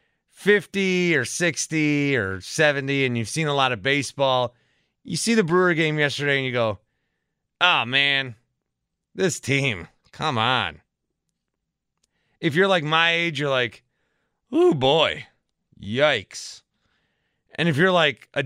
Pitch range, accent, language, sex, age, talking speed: 115-150 Hz, American, English, male, 30-49, 135 wpm